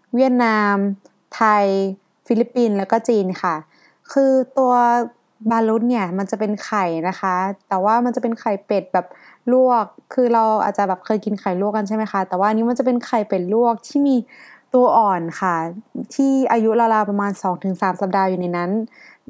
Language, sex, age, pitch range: Thai, female, 20-39, 190-235 Hz